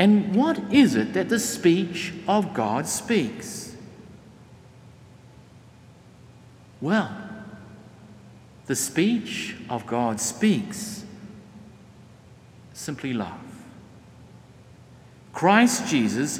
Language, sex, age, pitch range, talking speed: English, male, 60-79, 155-200 Hz, 75 wpm